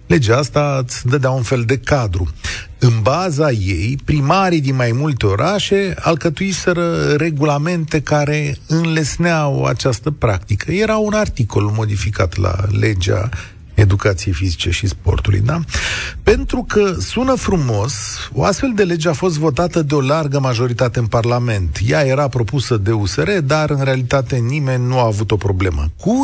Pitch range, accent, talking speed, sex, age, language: 110-170 Hz, native, 150 wpm, male, 40-59, Romanian